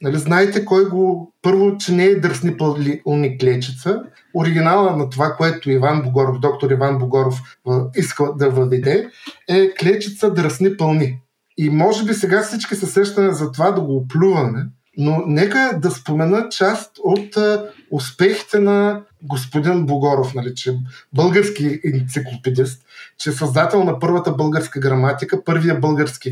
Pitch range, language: 140-195 Hz, Bulgarian